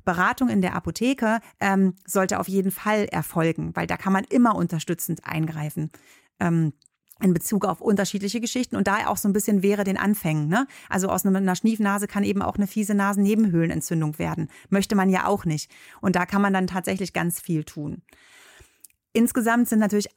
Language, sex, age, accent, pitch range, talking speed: German, female, 30-49, German, 180-215 Hz, 180 wpm